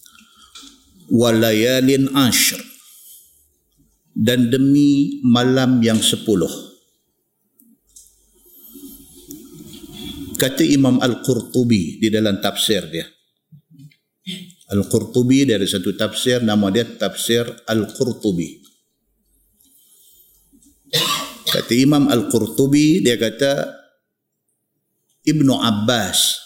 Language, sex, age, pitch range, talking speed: Malay, male, 50-69, 115-145 Hz, 65 wpm